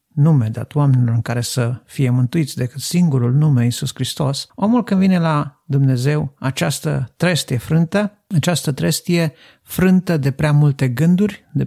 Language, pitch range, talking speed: Romanian, 125-155 Hz, 150 wpm